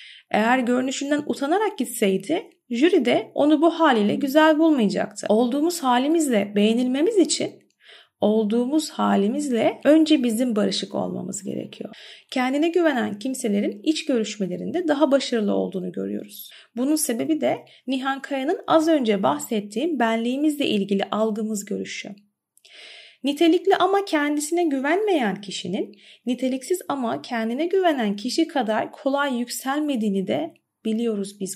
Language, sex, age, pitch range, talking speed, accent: Turkish, female, 30-49, 220-315 Hz, 110 wpm, native